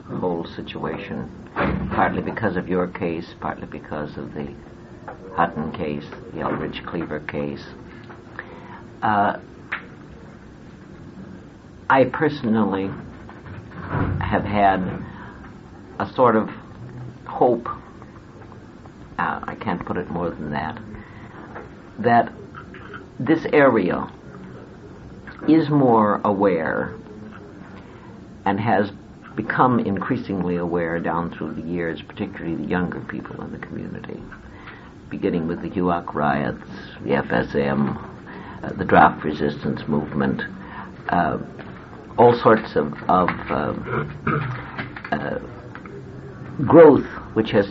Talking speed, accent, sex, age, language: 100 wpm, American, male, 60-79, English